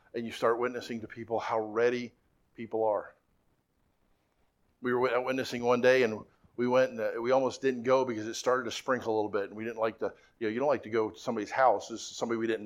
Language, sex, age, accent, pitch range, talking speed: English, male, 50-69, American, 115-135 Hz, 240 wpm